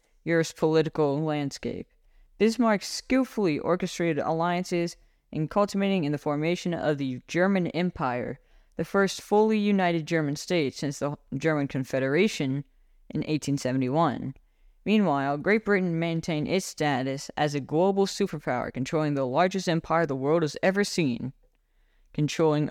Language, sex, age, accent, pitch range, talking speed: English, female, 10-29, American, 145-180 Hz, 125 wpm